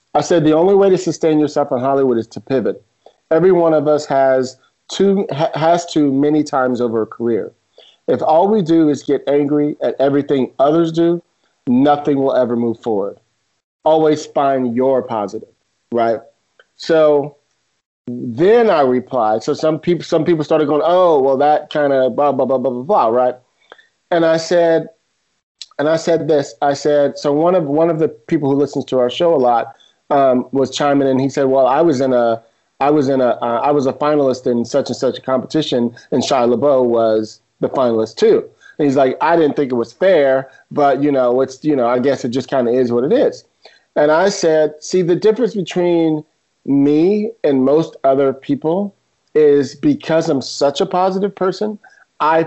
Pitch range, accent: 130-165 Hz, American